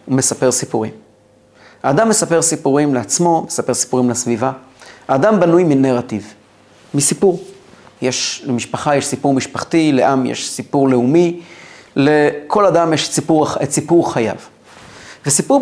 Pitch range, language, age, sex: 125-155 Hz, Hebrew, 30-49, male